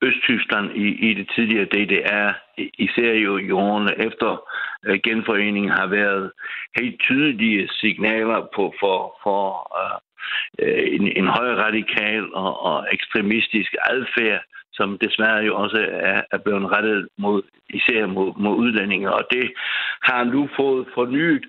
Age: 60-79